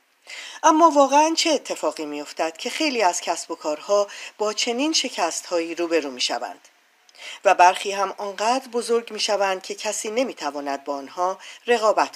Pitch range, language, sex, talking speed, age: 165-215 Hz, Persian, female, 160 wpm, 40-59